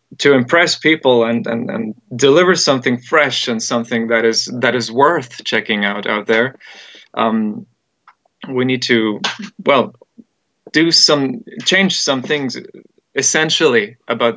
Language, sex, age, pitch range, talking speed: English, male, 20-39, 115-140 Hz, 135 wpm